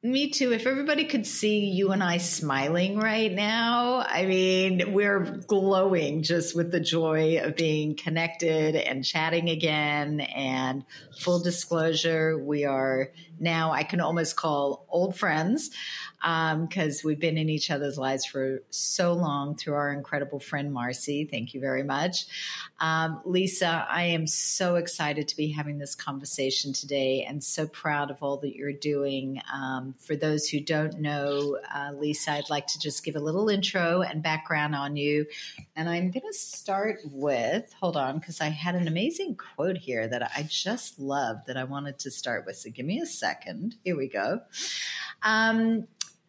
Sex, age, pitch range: female, 50-69, 145-185 Hz